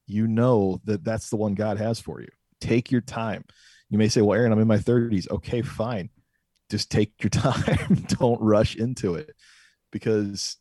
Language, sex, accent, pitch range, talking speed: English, male, American, 100-115 Hz, 185 wpm